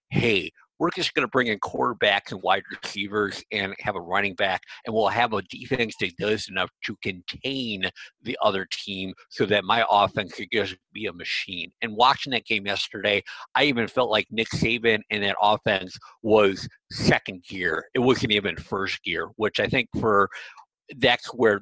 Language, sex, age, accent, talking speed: English, male, 50-69, American, 185 wpm